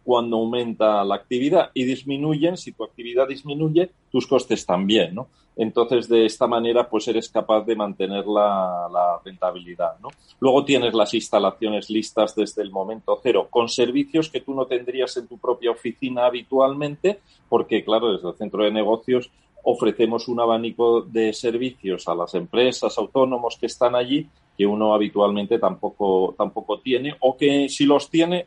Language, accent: Spanish, Spanish